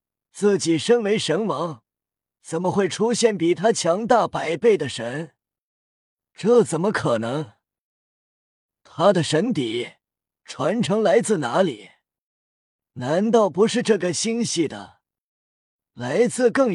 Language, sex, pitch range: Chinese, male, 155-215 Hz